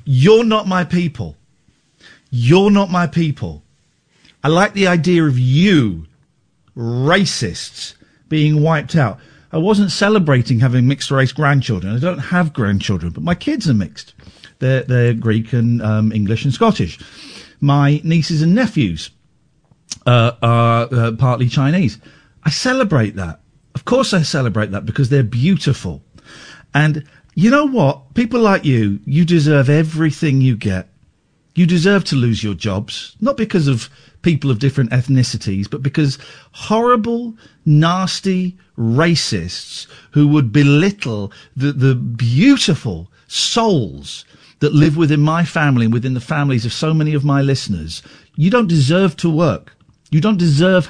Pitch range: 120-170 Hz